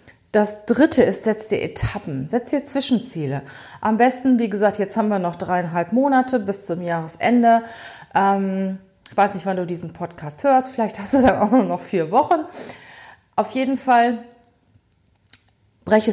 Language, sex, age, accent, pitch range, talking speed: German, female, 30-49, German, 165-230 Hz, 160 wpm